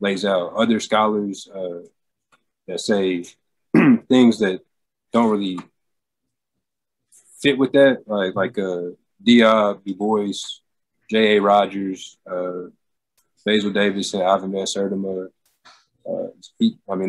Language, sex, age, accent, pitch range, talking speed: English, male, 20-39, American, 95-110 Hz, 110 wpm